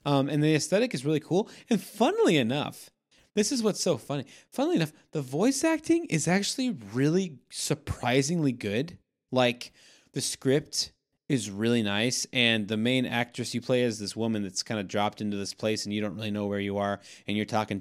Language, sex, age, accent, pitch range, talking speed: English, male, 20-39, American, 105-155 Hz, 195 wpm